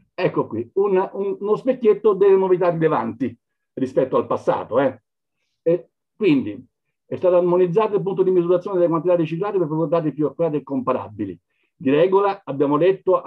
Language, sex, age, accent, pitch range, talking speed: Italian, male, 50-69, native, 145-185 Hz, 160 wpm